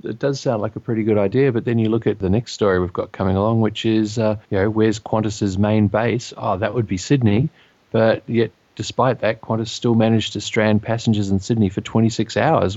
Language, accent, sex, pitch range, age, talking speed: English, Australian, male, 100-115 Hz, 30-49, 230 wpm